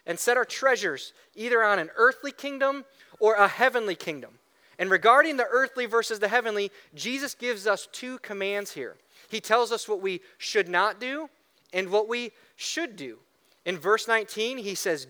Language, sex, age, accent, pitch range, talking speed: English, male, 30-49, American, 180-250 Hz, 175 wpm